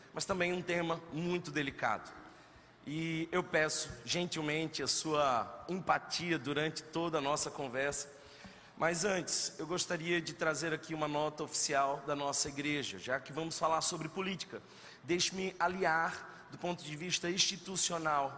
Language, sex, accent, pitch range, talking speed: Portuguese, male, Brazilian, 150-170 Hz, 145 wpm